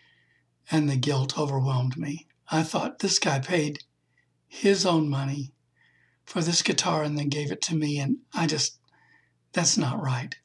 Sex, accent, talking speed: male, American, 155 wpm